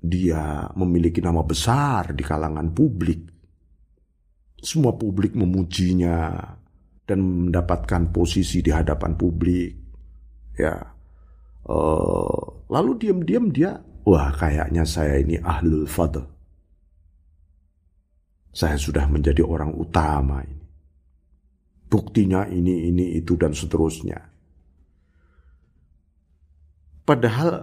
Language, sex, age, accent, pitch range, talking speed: Indonesian, male, 50-69, native, 70-100 Hz, 85 wpm